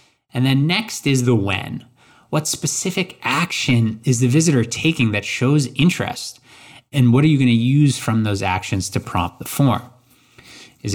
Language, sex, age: English, male, 20-39